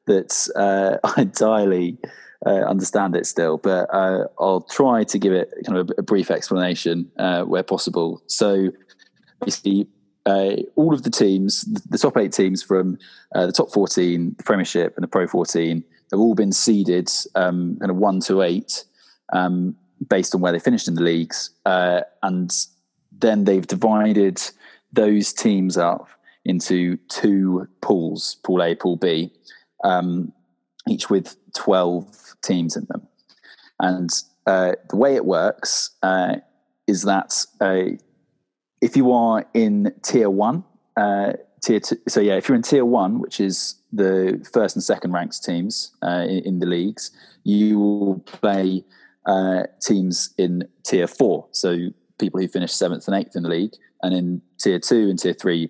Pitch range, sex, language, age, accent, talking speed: 90-105 Hz, male, English, 20-39, British, 160 wpm